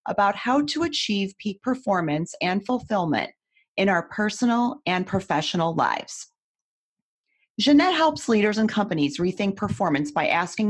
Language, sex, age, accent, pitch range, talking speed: English, female, 30-49, American, 175-240 Hz, 130 wpm